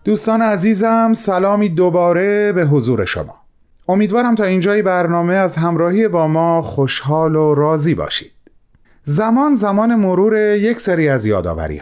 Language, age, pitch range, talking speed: Persian, 30-49, 125-195 Hz, 130 wpm